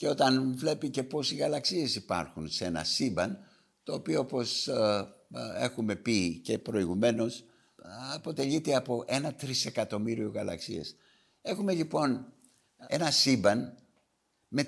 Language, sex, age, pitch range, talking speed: Greek, male, 60-79, 105-145 Hz, 115 wpm